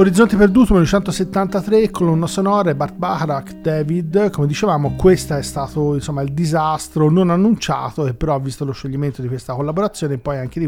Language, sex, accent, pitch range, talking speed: Italian, male, native, 140-165 Hz, 180 wpm